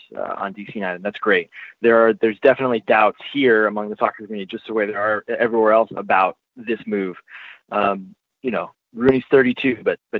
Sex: male